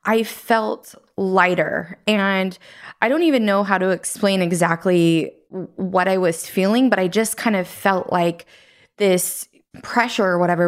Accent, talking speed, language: American, 150 wpm, English